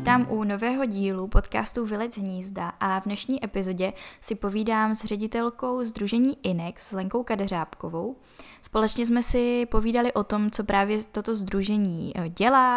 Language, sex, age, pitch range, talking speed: Czech, female, 10-29, 195-220 Hz, 140 wpm